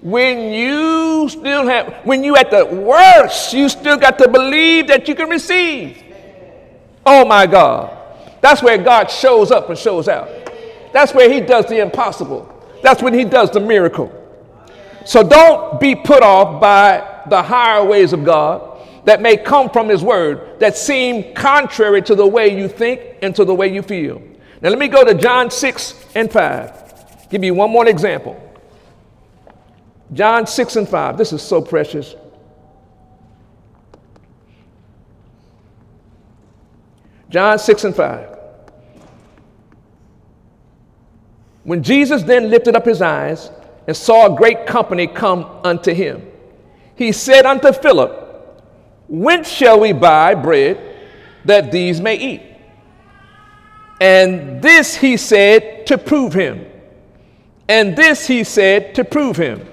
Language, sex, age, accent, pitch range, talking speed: English, male, 50-69, American, 185-270 Hz, 140 wpm